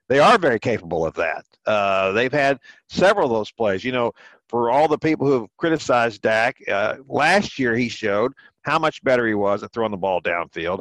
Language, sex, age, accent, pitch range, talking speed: English, male, 50-69, American, 110-150 Hz, 210 wpm